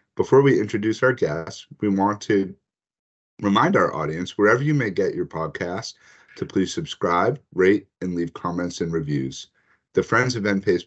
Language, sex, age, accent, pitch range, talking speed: English, male, 40-59, American, 90-125 Hz, 165 wpm